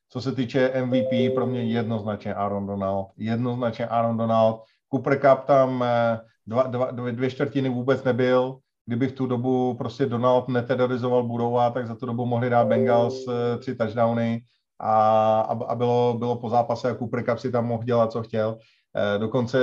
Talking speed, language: 170 wpm, Czech